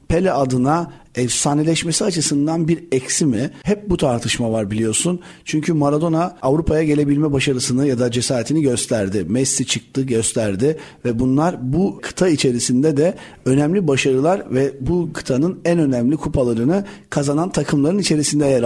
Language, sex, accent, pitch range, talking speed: Turkish, male, native, 130-175 Hz, 135 wpm